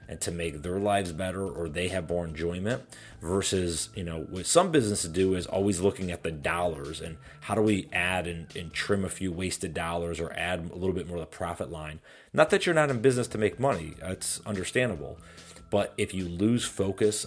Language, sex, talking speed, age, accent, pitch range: English, male, 215 wpm, 30-49, American, 85-105 Hz